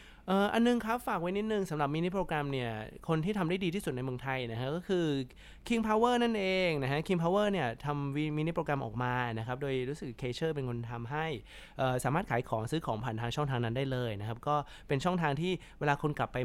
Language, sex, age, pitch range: Thai, male, 20-39, 130-185 Hz